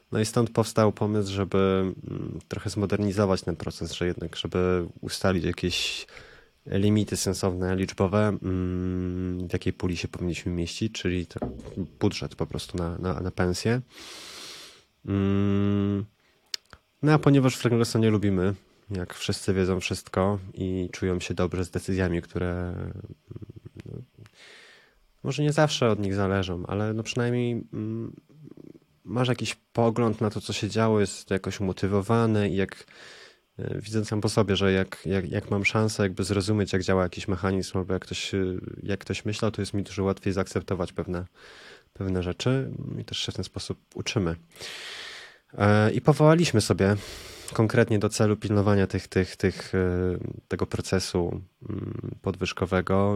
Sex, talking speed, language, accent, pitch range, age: male, 135 wpm, Polish, native, 95-110 Hz, 20-39